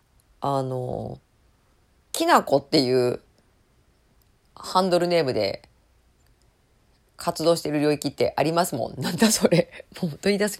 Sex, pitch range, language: female, 135-180 Hz, Japanese